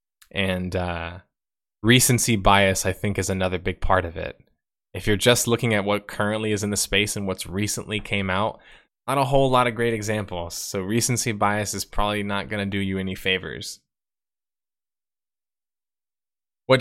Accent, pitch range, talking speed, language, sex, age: American, 95-115 Hz, 170 wpm, English, male, 20-39